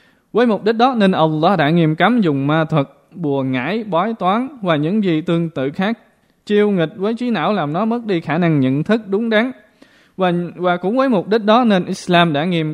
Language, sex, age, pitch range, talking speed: Vietnamese, male, 20-39, 150-205 Hz, 225 wpm